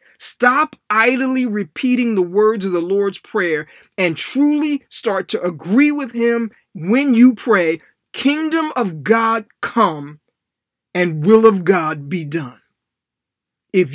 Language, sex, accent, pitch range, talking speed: English, male, American, 165-240 Hz, 130 wpm